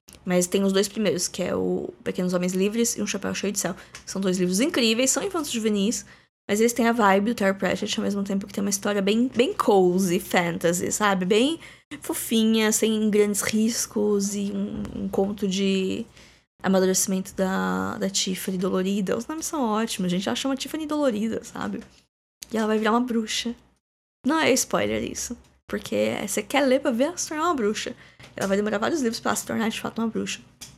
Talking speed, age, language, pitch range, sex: 195 wpm, 10-29, Portuguese, 200-260 Hz, female